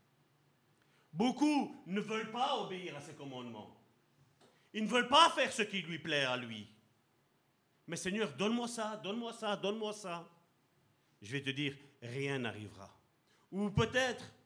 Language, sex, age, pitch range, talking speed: French, male, 50-69, 140-205 Hz, 145 wpm